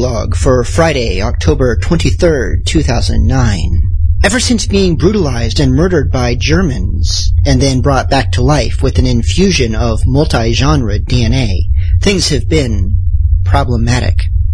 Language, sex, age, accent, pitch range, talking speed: English, male, 40-59, American, 85-120 Hz, 120 wpm